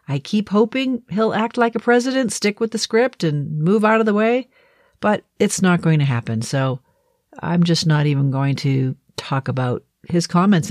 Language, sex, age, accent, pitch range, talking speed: English, female, 50-69, American, 155-210 Hz, 195 wpm